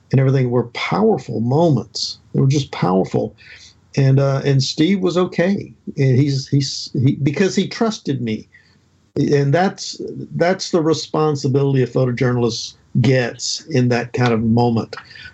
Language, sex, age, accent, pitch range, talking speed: English, male, 50-69, American, 120-150 Hz, 140 wpm